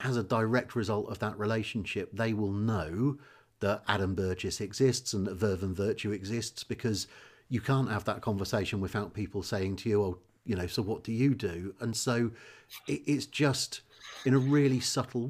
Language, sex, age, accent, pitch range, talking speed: English, male, 40-59, British, 105-135 Hz, 185 wpm